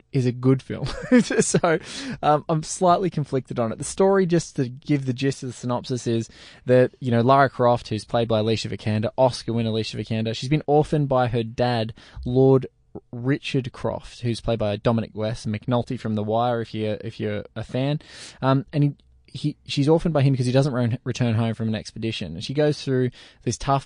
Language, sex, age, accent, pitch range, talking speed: English, male, 20-39, Australian, 110-135 Hz, 200 wpm